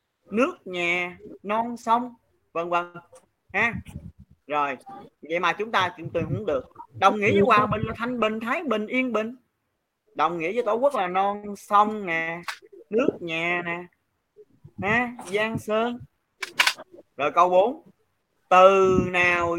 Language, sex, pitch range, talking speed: Vietnamese, male, 170-230 Hz, 145 wpm